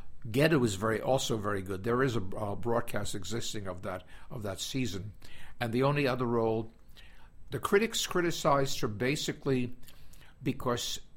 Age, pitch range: 60-79, 110-135 Hz